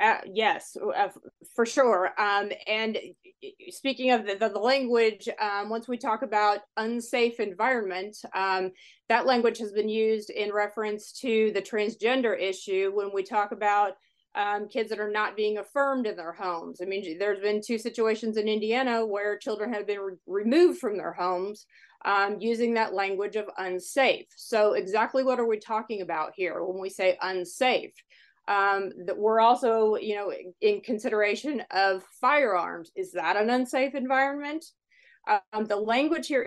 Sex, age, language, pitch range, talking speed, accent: female, 30-49, English, 205-245 Hz, 165 wpm, American